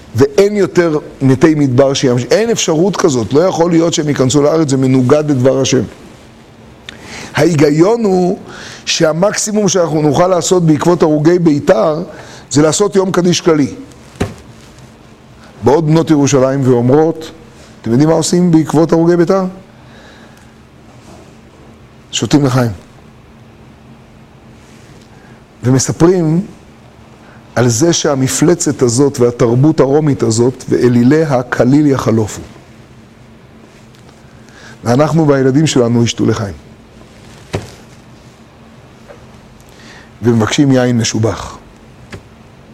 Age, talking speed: 40-59, 90 wpm